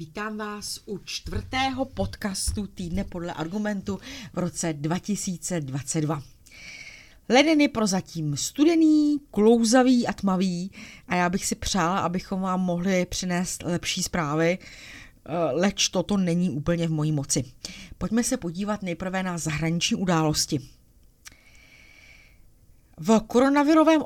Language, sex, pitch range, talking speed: Czech, female, 165-215 Hz, 110 wpm